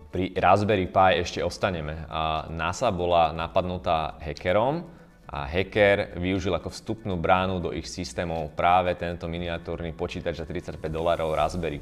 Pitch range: 80-95 Hz